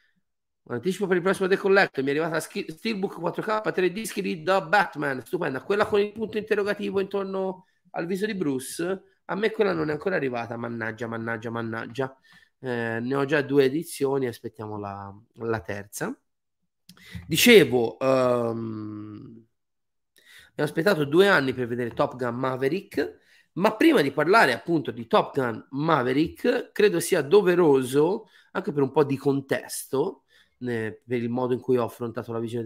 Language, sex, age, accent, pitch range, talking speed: Italian, male, 30-49, native, 115-175 Hz, 155 wpm